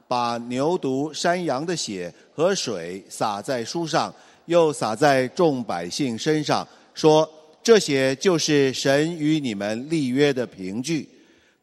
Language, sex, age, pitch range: Chinese, male, 50-69, 130-170 Hz